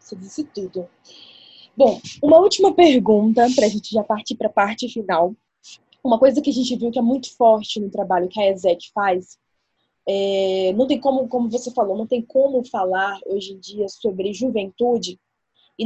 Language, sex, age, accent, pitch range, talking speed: Portuguese, female, 10-29, Brazilian, 195-245 Hz, 180 wpm